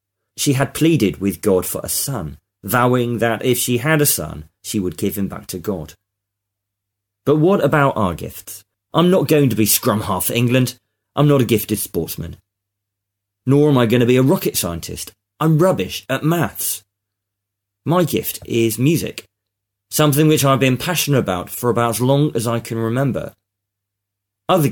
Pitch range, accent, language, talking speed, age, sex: 100-135 Hz, British, English, 175 wpm, 30-49, male